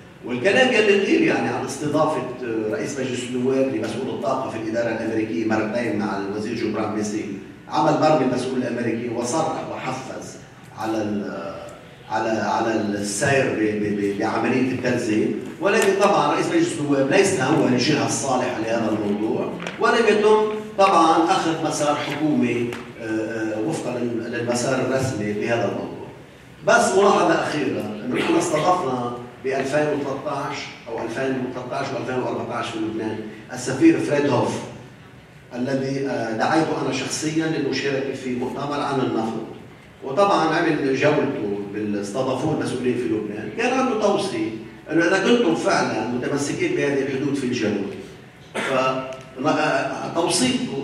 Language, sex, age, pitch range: English, male, 40-59, 115-150 Hz